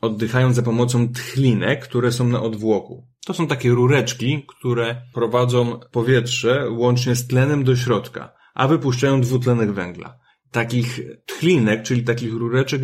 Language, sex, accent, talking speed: Polish, male, native, 135 wpm